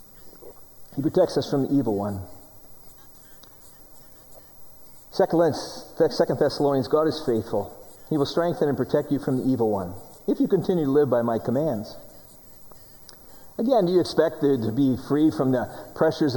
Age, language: 50-69, English